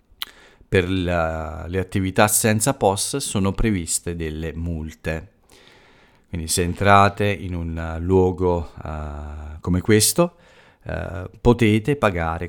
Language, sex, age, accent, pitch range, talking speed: Italian, male, 40-59, native, 85-105 Hz, 100 wpm